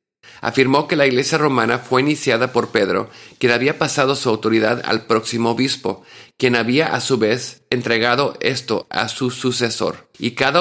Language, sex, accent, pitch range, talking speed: English, male, Mexican, 110-135 Hz, 165 wpm